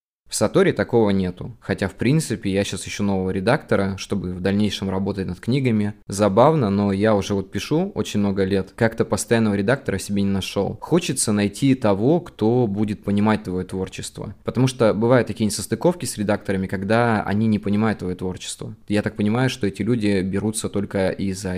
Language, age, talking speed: Russian, 20-39, 175 wpm